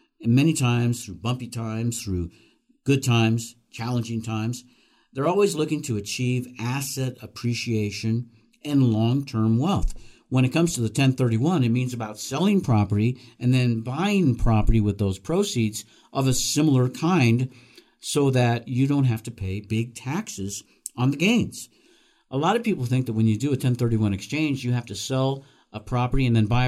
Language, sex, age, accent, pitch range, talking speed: English, male, 50-69, American, 110-135 Hz, 170 wpm